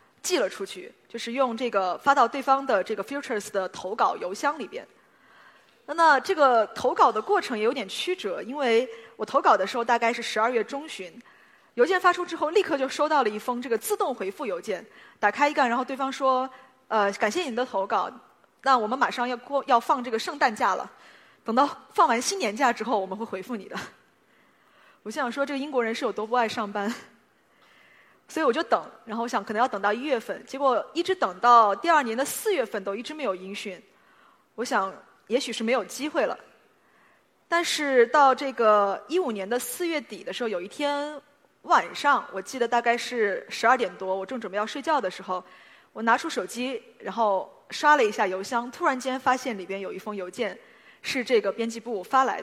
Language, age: Chinese, 20-39